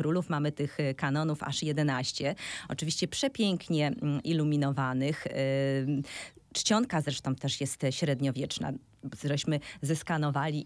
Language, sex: Polish, female